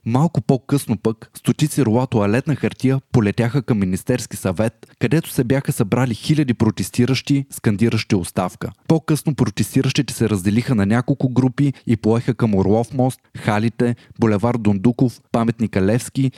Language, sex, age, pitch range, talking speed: Bulgarian, male, 20-39, 110-135 Hz, 130 wpm